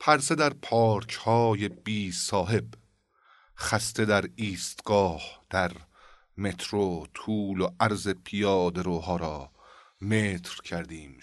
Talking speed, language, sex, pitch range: 95 wpm, Persian, male, 90-110 Hz